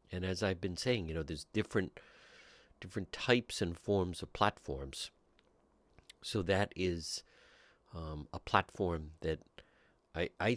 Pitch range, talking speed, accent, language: 80-100 Hz, 135 wpm, American, English